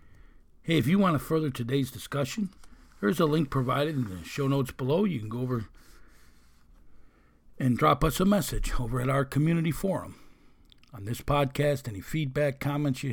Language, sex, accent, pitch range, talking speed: English, male, American, 115-145 Hz, 175 wpm